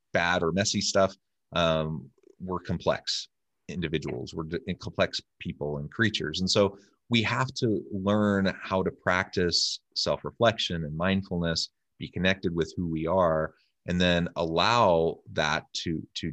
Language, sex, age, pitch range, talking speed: English, male, 30-49, 80-100 Hz, 135 wpm